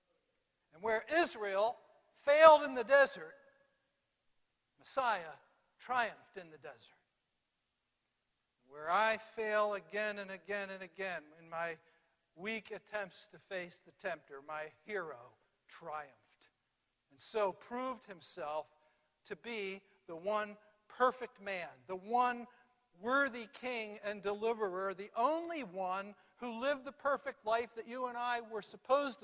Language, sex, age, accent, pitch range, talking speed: English, male, 60-79, American, 190-245 Hz, 125 wpm